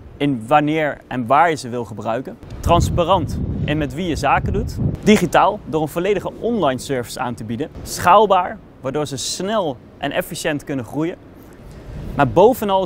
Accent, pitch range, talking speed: Dutch, 135-185 Hz, 160 wpm